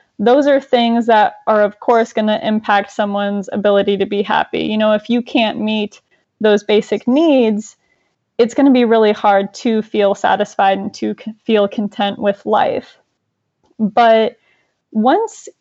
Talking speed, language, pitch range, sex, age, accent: 160 wpm, English, 205-240 Hz, female, 20-39, American